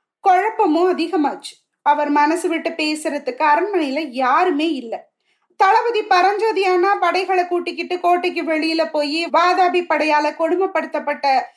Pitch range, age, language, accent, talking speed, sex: 305-390 Hz, 30-49, Tamil, native, 100 wpm, female